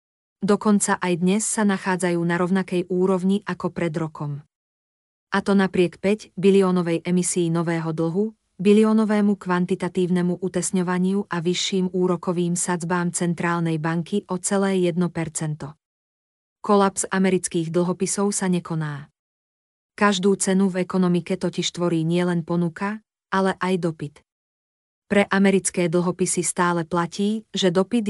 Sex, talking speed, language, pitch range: female, 115 wpm, Slovak, 170-195 Hz